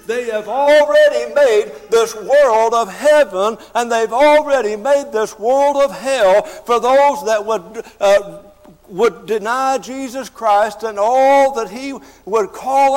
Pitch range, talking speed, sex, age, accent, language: 230-290 Hz, 145 wpm, male, 60-79, American, English